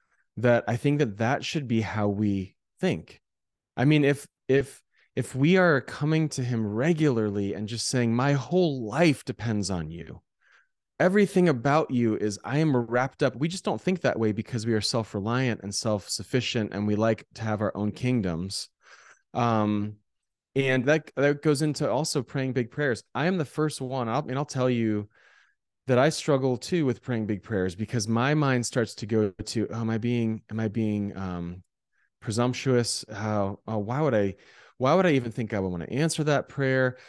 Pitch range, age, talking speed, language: 105-135 Hz, 30-49, 190 wpm, English